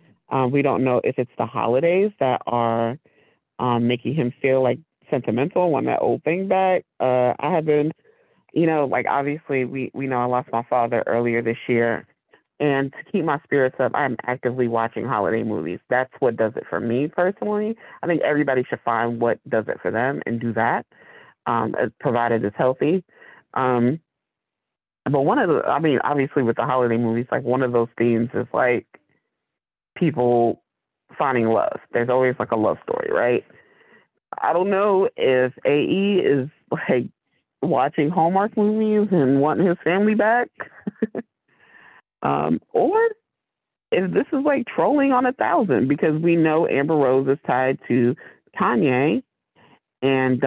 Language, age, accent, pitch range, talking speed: English, 30-49, American, 120-165 Hz, 165 wpm